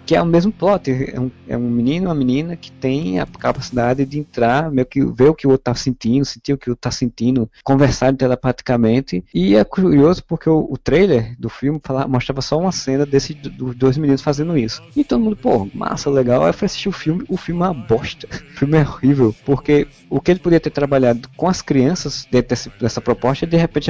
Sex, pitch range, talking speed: male, 115-145 Hz, 240 wpm